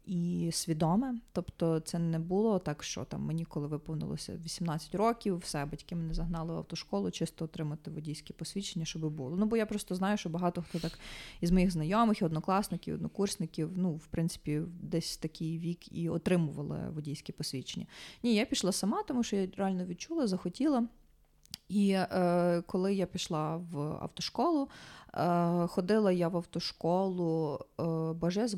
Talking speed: 160 wpm